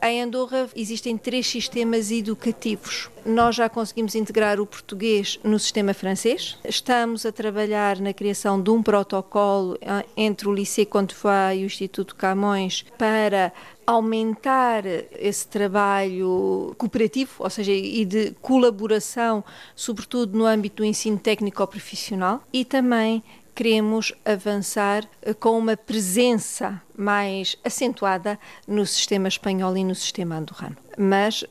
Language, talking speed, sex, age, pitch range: Portuguese, 120 wpm, female, 40-59, 195-230 Hz